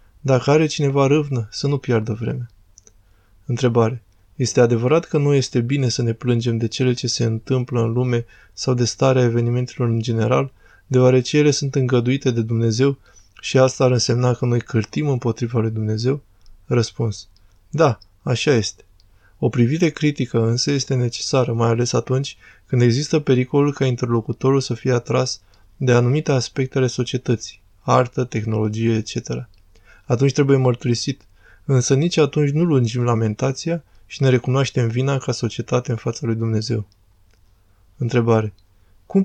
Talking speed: 150 wpm